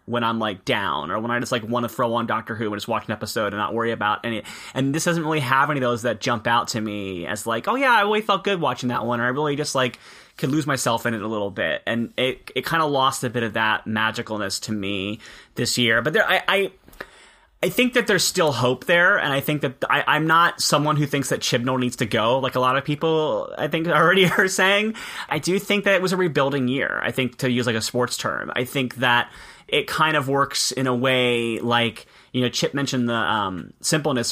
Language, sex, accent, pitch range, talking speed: English, male, American, 115-150 Hz, 260 wpm